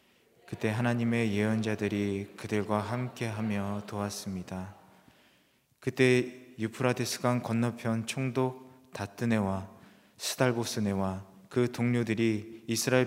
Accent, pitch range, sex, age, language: native, 100-120 Hz, male, 20-39, Korean